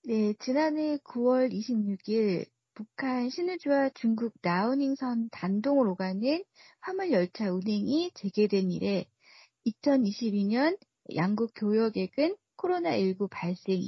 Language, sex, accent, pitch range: Korean, female, native, 200-280 Hz